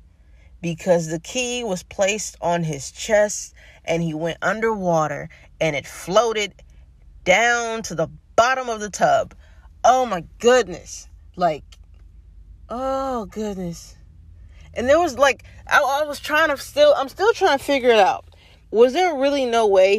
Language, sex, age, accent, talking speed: English, female, 20-39, American, 150 wpm